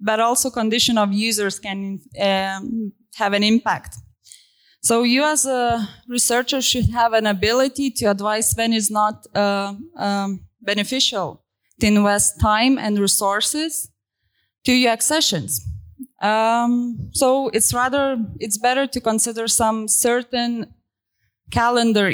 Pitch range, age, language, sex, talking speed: 205-245 Hz, 20-39, Polish, female, 125 wpm